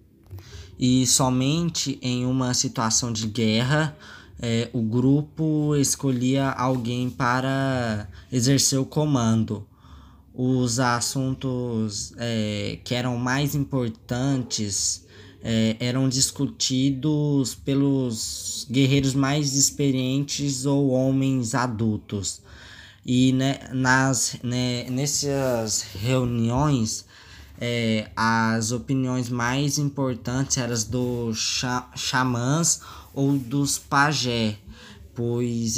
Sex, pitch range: male, 115-135 Hz